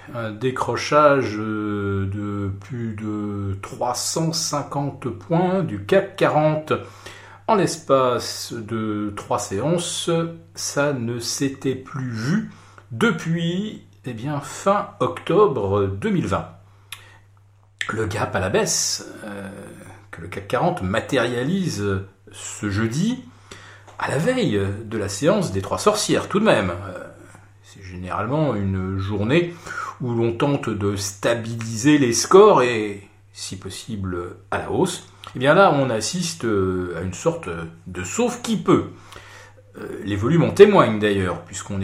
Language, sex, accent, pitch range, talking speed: French, male, French, 100-135 Hz, 120 wpm